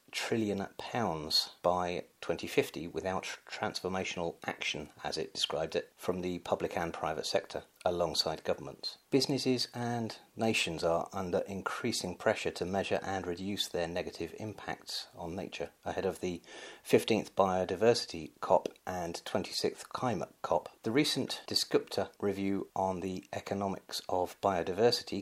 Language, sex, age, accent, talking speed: English, male, 40-59, British, 130 wpm